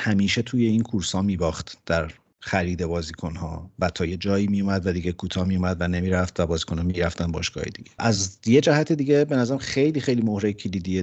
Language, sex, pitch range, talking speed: Persian, male, 90-115 Hz, 185 wpm